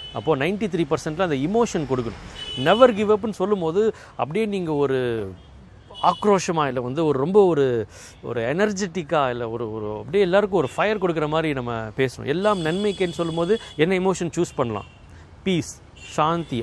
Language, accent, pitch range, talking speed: Tamil, native, 125-175 Hz, 150 wpm